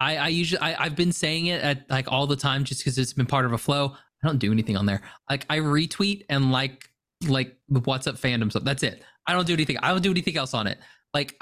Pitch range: 120-150 Hz